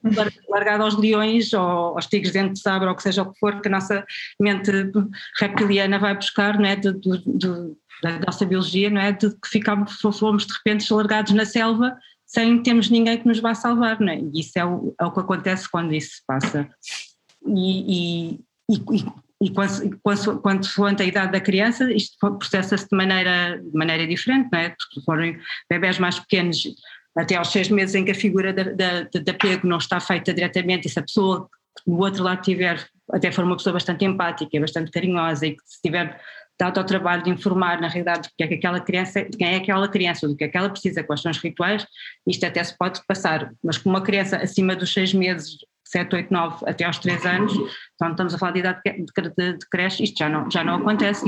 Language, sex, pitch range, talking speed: Portuguese, female, 175-205 Hz, 220 wpm